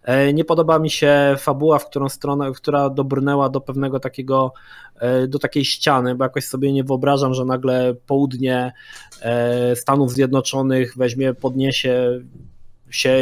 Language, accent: Polish, native